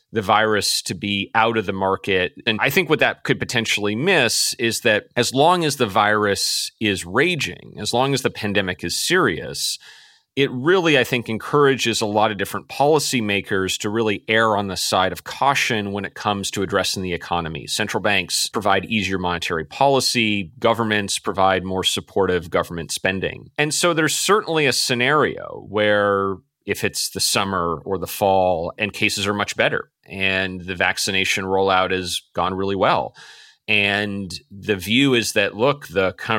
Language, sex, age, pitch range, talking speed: English, male, 30-49, 95-120 Hz, 170 wpm